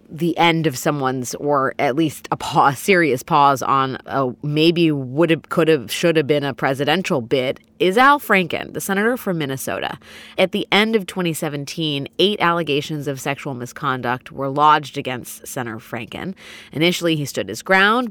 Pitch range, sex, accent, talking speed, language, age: 140-180 Hz, female, American, 170 wpm, English, 30-49